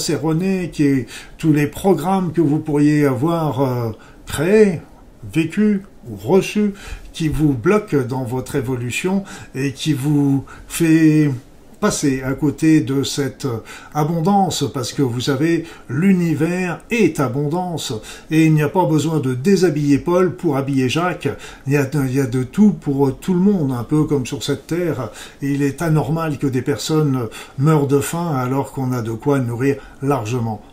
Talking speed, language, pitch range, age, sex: 165 wpm, French, 135-165 Hz, 50-69, male